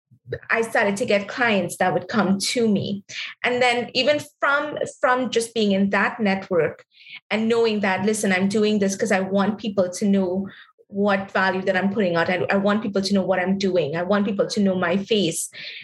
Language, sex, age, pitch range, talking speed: English, female, 20-39, 195-230 Hz, 210 wpm